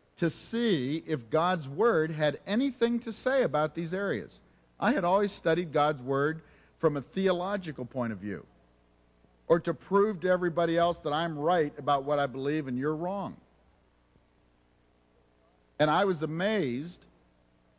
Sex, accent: male, American